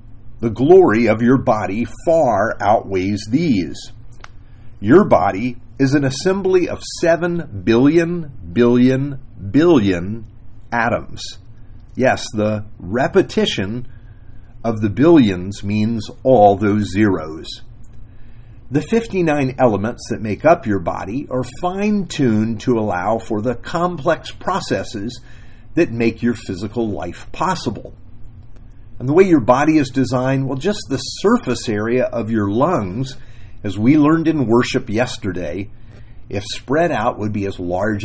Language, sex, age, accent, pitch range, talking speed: English, male, 50-69, American, 105-130 Hz, 125 wpm